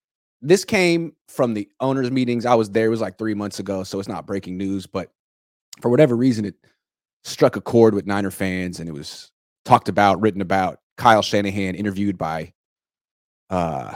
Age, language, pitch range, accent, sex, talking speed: 30-49, English, 95-125 Hz, American, male, 185 wpm